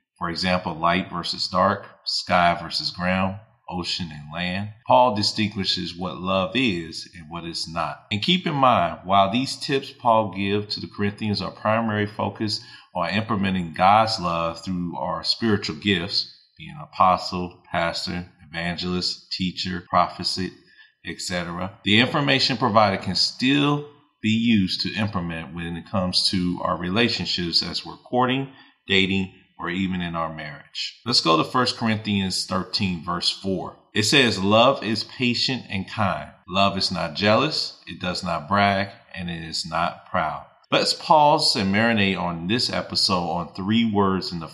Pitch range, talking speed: 90-110 Hz, 155 wpm